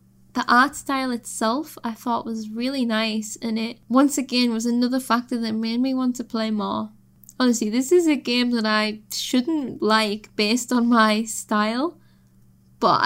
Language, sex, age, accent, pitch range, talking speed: English, female, 10-29, British, 220-270 Hz, 170 wpm